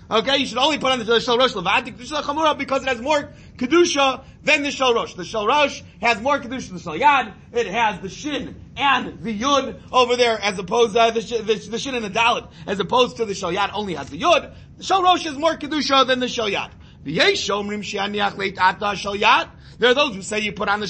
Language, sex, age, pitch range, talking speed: English, male, 30-49, 215-265 Hz, 220 wpm